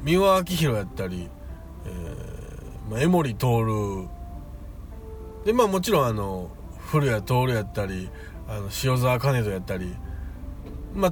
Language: Japanese